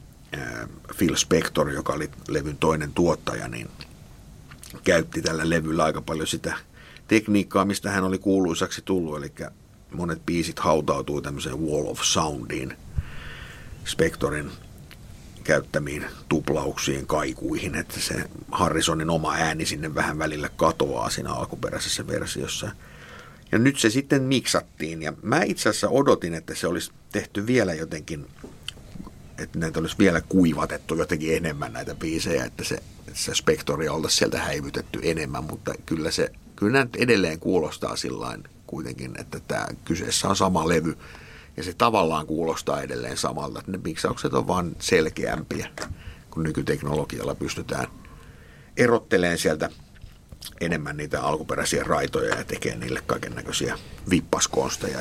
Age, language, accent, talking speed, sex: 50-69, Finnish, native, 130 wpm, male